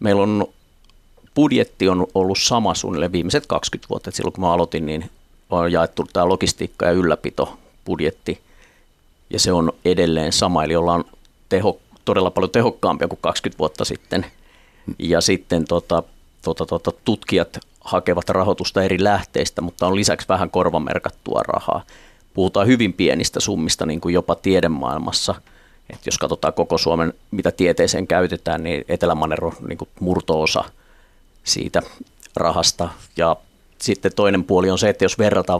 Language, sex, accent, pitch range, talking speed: Finnish, male, native, 85-95 Hz, 140 wpm